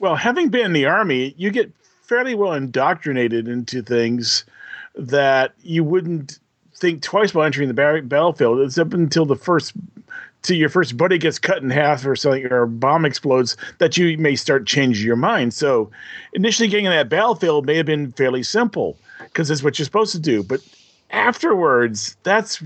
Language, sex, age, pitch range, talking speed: English, male, 40-59, 125-170 Hz, 185 wpm